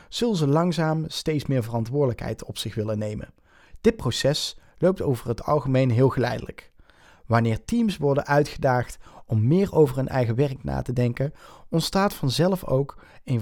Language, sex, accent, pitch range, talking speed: Dutch, male, Dutch, 115-150 Hz, 155 wpm